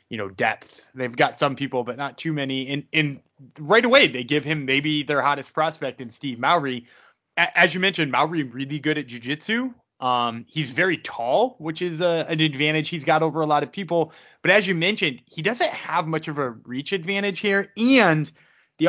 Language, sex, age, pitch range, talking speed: English, male, 20-39, 130-165 Hz, 195 wpm